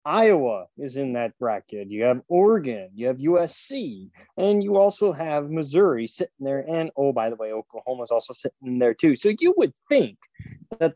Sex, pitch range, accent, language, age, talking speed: male, 120-170 Hz, American, English, 20-39, 185 wpm